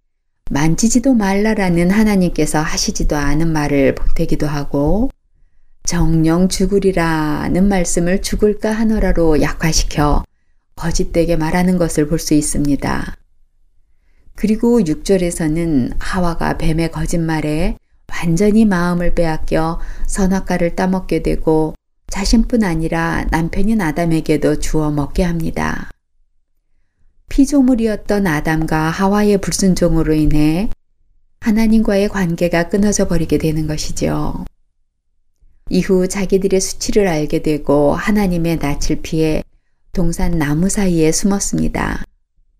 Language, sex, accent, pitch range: Korean, female, native, 150-190 Hz